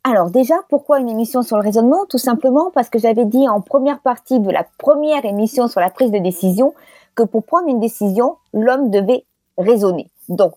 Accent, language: French, French